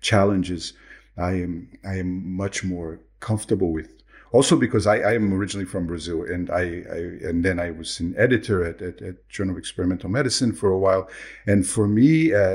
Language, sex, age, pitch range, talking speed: English, male, 50-69, 90-110 Hz, 190 wpm